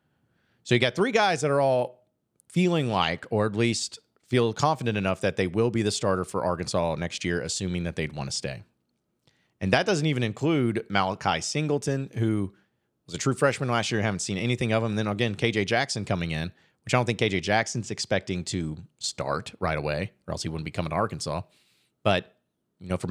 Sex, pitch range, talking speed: male, 95-120 Hz, 210 wpm